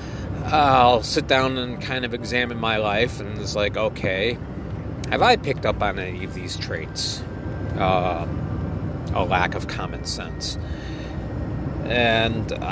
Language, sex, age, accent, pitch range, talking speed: English, male, 30-49, American, 100-130 Hz, 140 wpm